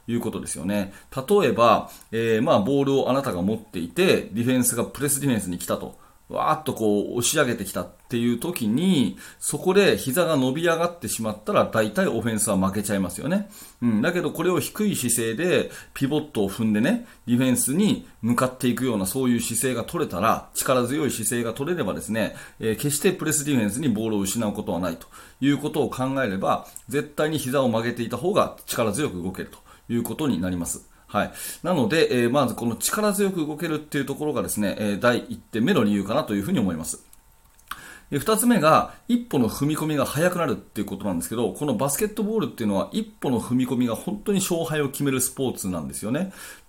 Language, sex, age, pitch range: Japanese, male, 30-49, 115-165 Hz